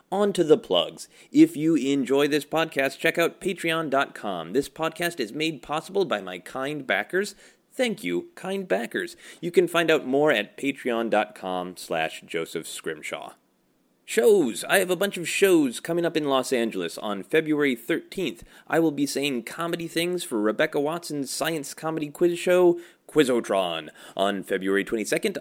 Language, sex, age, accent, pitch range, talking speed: English, male, 30-49, American, 110-165 Hz, 160 wpm